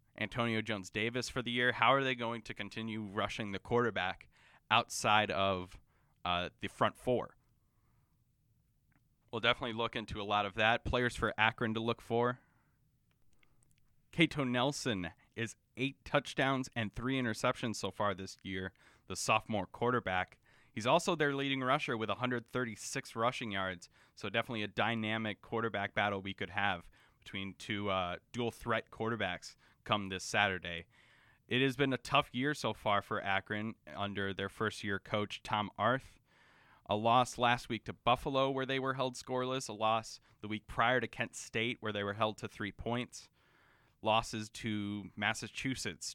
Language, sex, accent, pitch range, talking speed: English, male, American, 105-125 Hz, 155 wpm